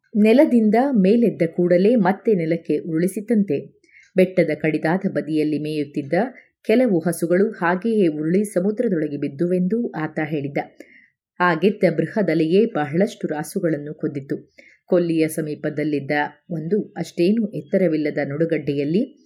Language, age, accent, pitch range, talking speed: Kannada, 30-49, native, 155-210 Hz, 90 wpm